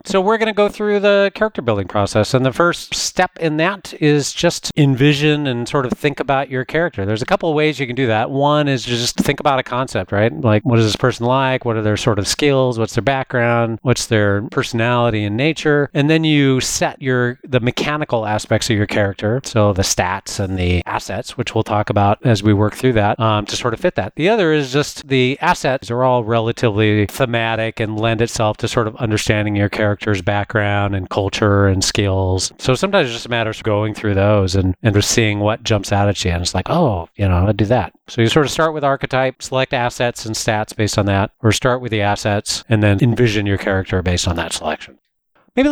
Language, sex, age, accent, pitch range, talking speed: English, male, 40-59, American, 105-140 Hz, 230 wpm